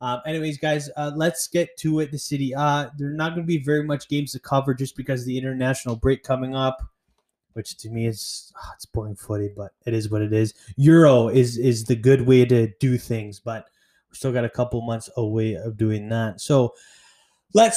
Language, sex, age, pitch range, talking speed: English, male, 20-39, 130-160 Hz, 225 wpm